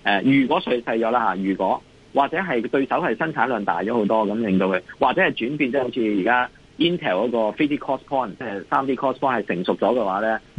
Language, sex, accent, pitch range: Chinese, male, native, 110-160 Hz